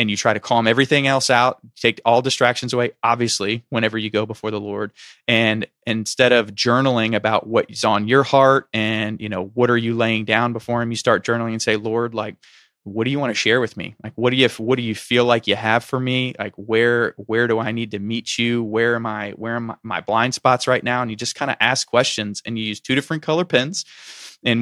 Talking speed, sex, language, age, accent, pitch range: 245 wpm, male, English, 20-39, American, 110-125 Hz